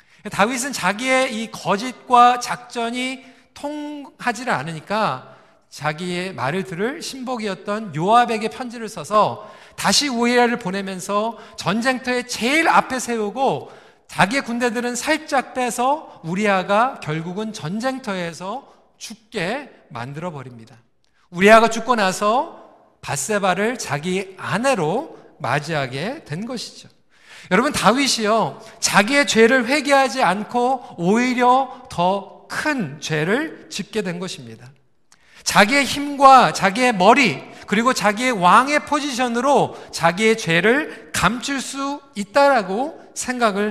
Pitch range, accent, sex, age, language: 185-255 Hz, native, male, 40-59, Korean